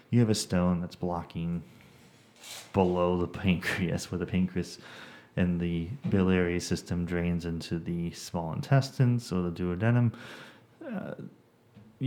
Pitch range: 90-110 Hz